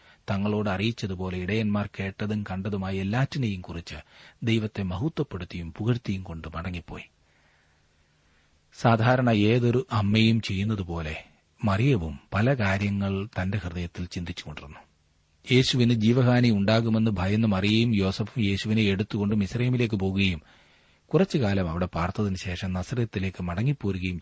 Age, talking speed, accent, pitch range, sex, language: 30-49, 90 wpm, native, 90-115 Hz, male, Malayalam